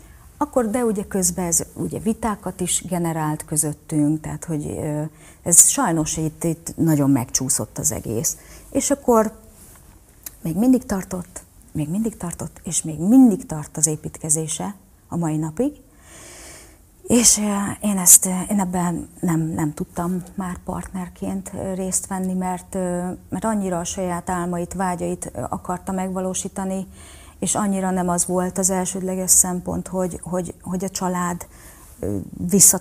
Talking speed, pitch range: 130 wpm, 170-195 Hz